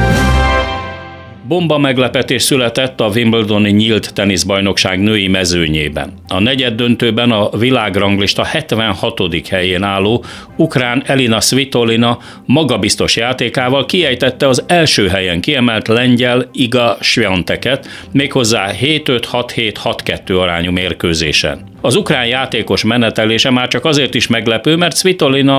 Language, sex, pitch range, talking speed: Hungarian, male, 95-125 Hz, 105 wpm